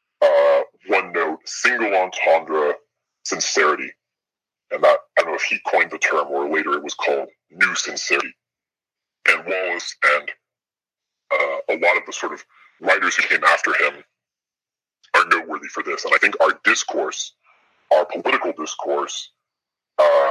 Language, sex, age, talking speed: English, female, 40-59, 150 wpm